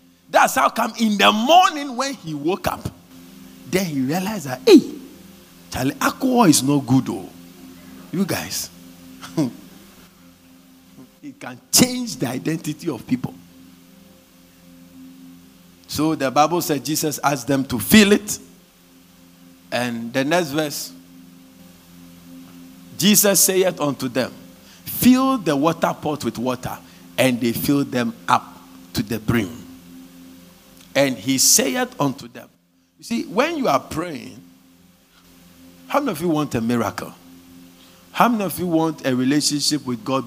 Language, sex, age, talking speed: English, male, 50-69, 130 wpm